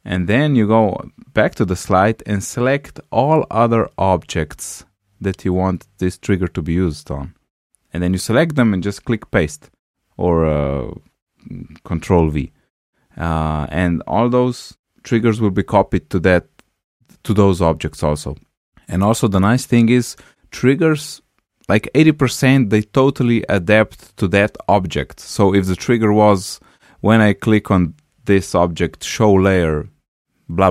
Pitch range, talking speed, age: 90-115 Hz, 150 wpm, 30-49